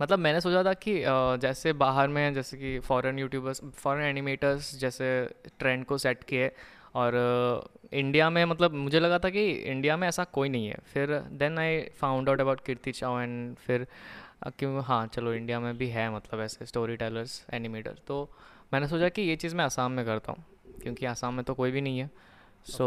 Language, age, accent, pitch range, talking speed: Hindi, 20-39, native, 125-150 Hz, 195 wpm